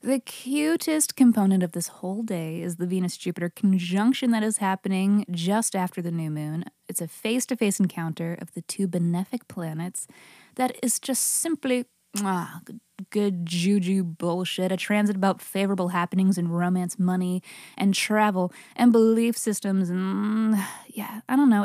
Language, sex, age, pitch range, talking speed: English, female, 20-39, 175-220 Hz, 145 wpm